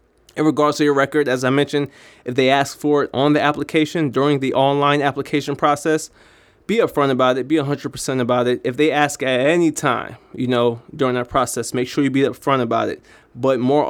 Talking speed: 210 wpm